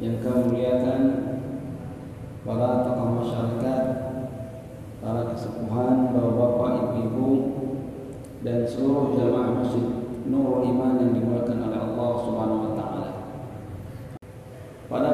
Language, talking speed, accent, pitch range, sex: Indonesian, 95 wpm, native, 120-140 Hz, male